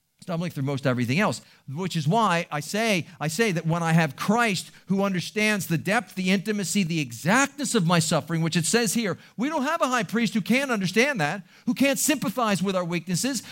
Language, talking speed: English, 215 wpm